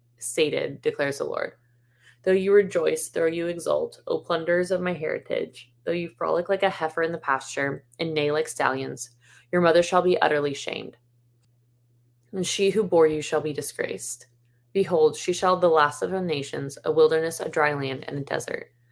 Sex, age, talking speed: female, 20-39, 185 wpm